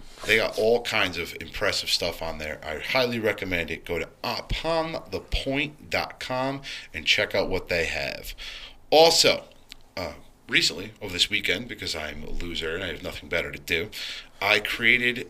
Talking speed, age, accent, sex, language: 160 wpm, 40-59, American, male, English